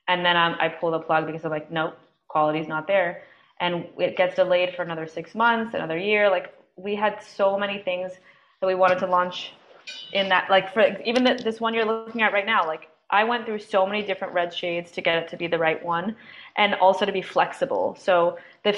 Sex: female